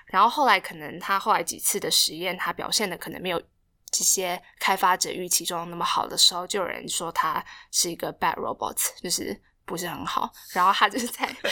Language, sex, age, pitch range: Chinese, female, 10-29, 175-230 Hz